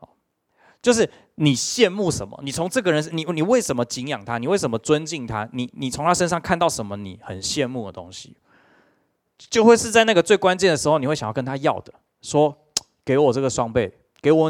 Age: 20-39